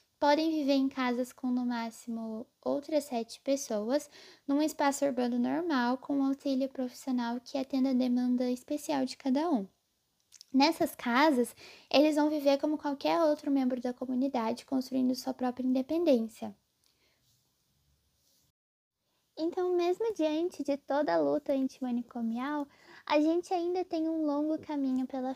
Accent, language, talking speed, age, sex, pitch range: Brazilian, Portuguese, 135 wpm, 10-29, female, 250-310 Hz